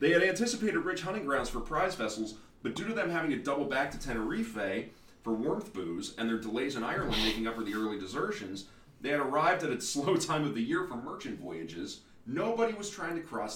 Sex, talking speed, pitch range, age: male, 225 wpm, 95-140 Hz, 30-49